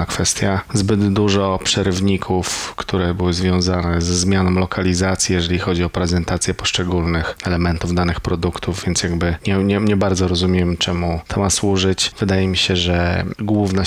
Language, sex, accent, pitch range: Polish, male, native, 90-100 Hz